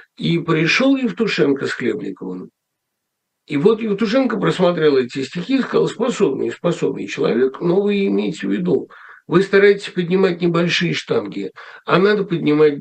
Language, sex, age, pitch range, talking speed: Russian, male, 60-79, 145-205 Hz, 130 wpm